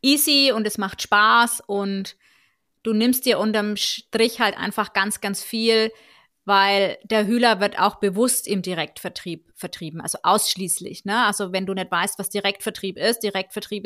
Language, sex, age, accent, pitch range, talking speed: German, female, 20-39, German, 195-245 Hz, 155 wpm